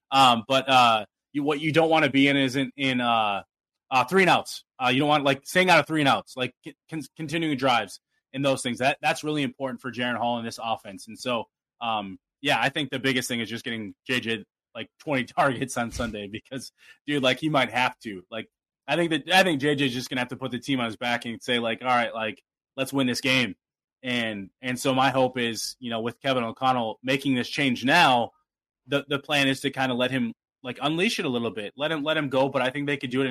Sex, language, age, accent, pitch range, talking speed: male, English, 20-39, American, 120-140 Hz, 255 wpm